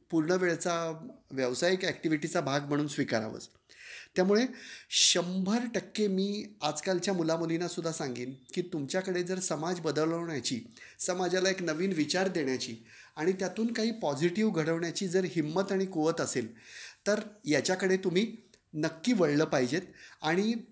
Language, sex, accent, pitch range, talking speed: Marathi, male, native, 155-195 Hz, 115 wpm